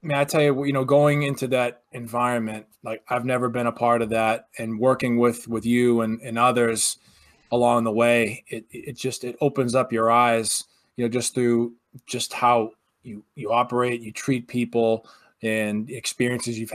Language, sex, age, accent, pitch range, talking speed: English, male, 20-39, American, 115-145 Hz, 190 wpm